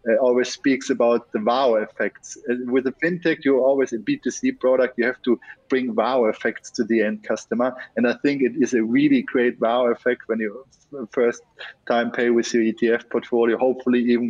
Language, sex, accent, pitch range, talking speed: English, male, German, 120-140 Hz, 195 wpm